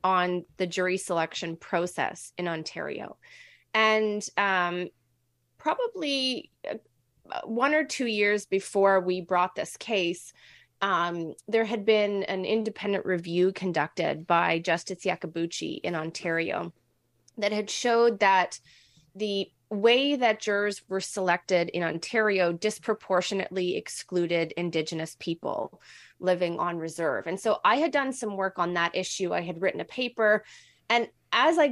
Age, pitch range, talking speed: 20-39, 170-220 Hz, 130 wpm